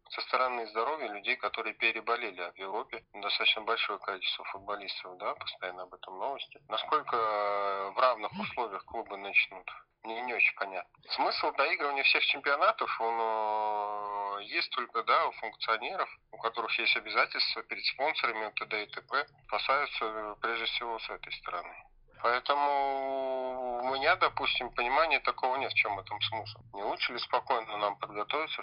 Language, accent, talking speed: Russian, native, 145 wpm